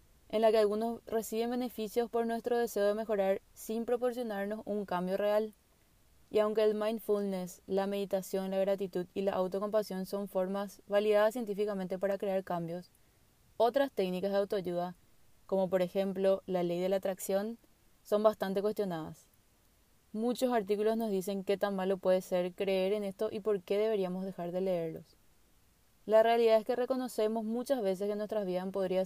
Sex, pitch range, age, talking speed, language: female, 195-220 Hz, 20-39, 165 wpm, Spanish